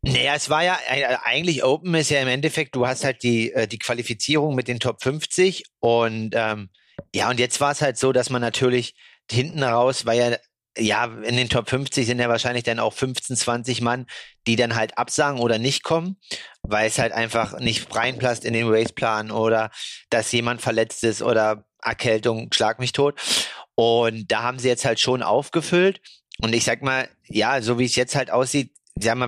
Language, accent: German, German